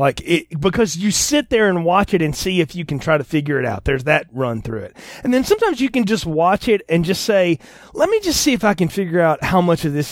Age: 30-49